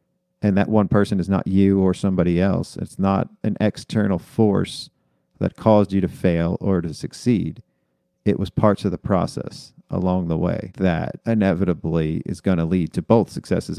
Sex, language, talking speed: male, English, 180 wpm